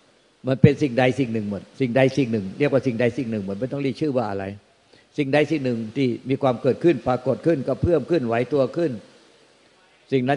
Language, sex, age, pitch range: Thai, male, 60-79, 115-135 Hz